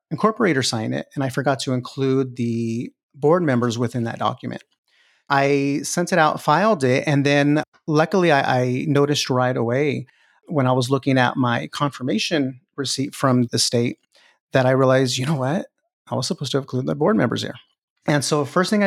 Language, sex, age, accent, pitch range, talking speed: English, male, 30-49, American, 125-145 Hz, 190 wpm